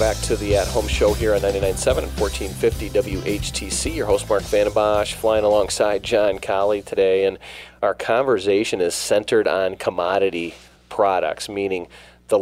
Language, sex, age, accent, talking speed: English, male, 30-49, American, 140 wpm